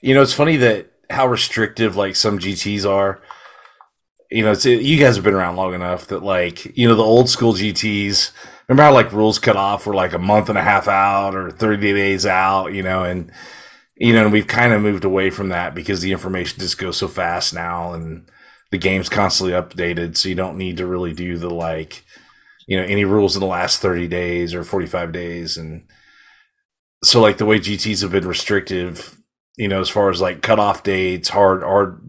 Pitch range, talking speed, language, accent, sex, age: 90-105 Hz, 215 wpm, English, American, male, 30-49